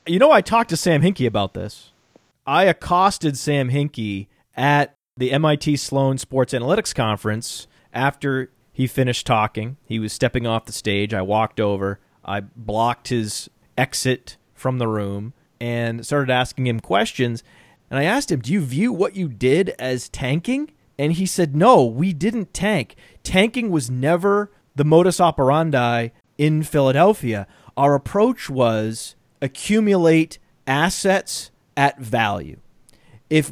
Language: English